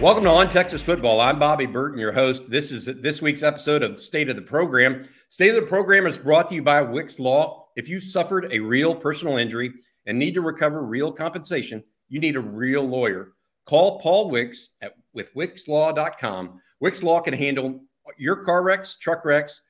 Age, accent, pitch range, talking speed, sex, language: 50-69, American, 130-165 Hz, 190 wpm, male, English